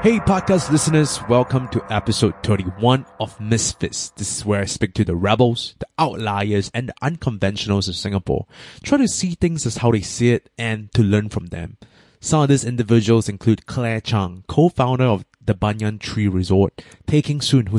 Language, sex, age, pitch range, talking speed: English, male, 20-39, 105-130 Hz, 180 wpm